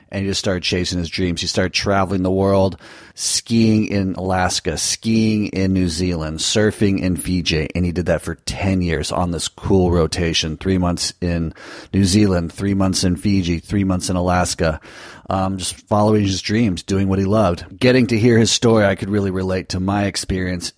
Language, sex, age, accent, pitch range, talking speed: English, male, 40-59, American, 85-100 Hz, 195 wpm